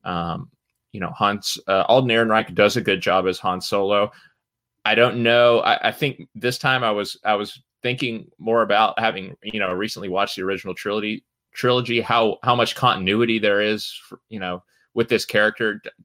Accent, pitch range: American, 95-115 Hz